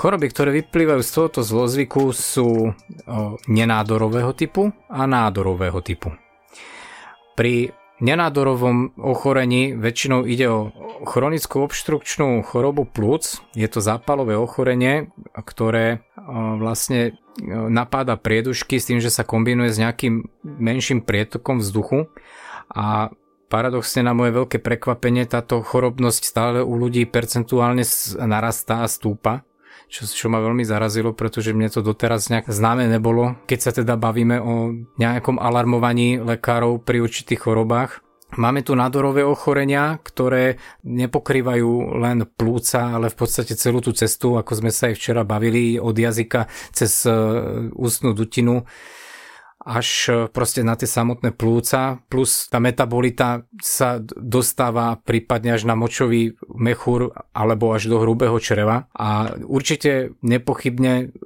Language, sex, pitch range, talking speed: Slovak, male, 115-130 Hz, 125 wpm